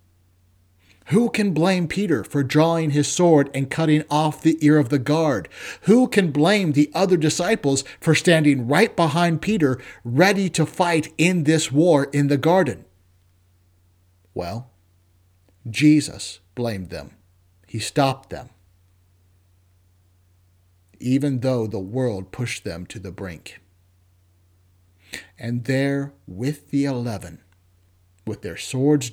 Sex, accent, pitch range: male, American, 90-145 Hz